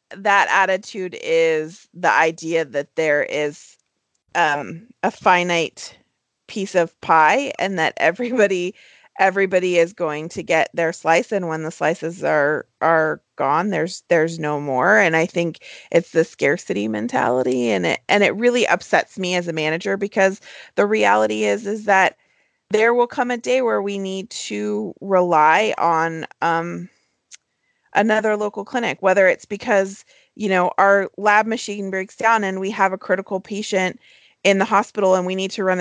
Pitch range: 160-200 Hz